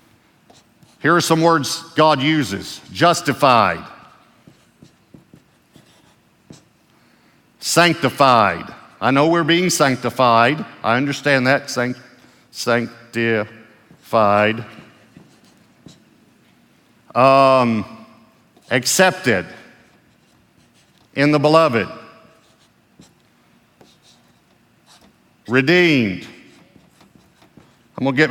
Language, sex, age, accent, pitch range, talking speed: English, male, 50-69, American, 115-160 Hz, 55 wpm